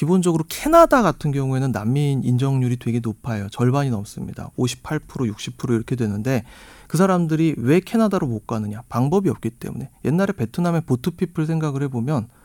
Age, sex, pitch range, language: 40-59, male, 120-165 Hz, Korean